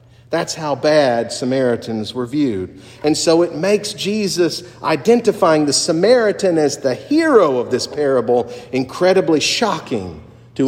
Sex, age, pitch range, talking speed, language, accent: male, 50-69, 130-190 Hz, 130 wpm, English, American